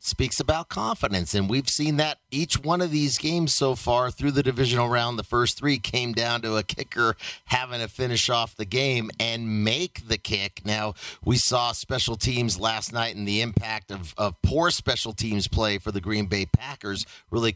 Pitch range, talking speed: 110-150 Hz, 200 wpm